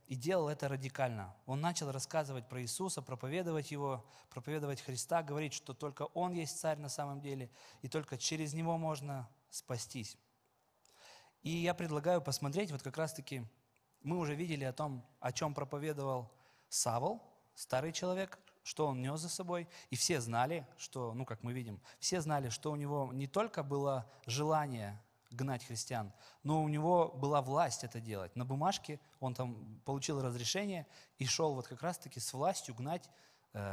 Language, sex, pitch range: Russian, male, 130-155 Hz